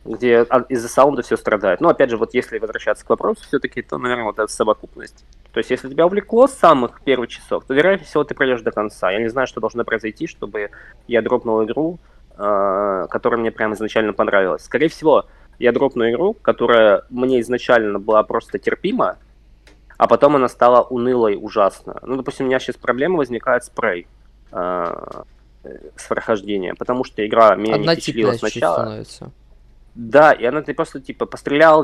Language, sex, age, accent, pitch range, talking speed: Russian, male, 20-39, native, 110-135 Hz, 165 wpm